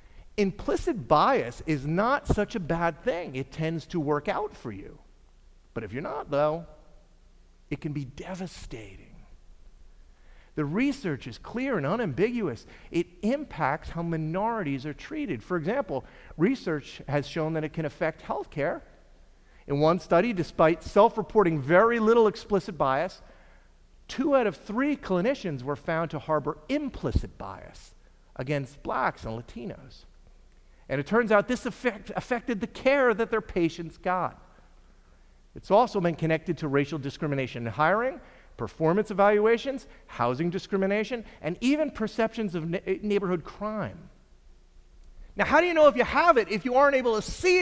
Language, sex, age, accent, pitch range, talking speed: English, male, 50-69, American, 150-230 Hz, 145 wpm